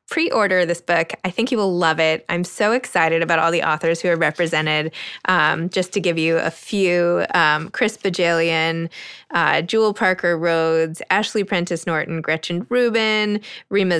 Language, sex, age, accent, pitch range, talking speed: English, female, 20-39, American, 170-215 Hz, 165 wpm